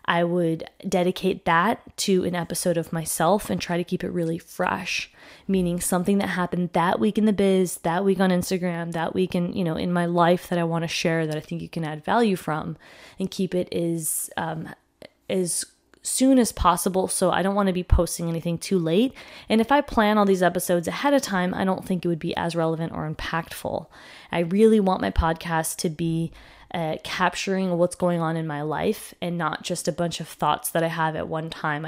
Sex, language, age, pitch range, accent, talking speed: female, English, 20-39, 165-190 Hz, American, 220 wpm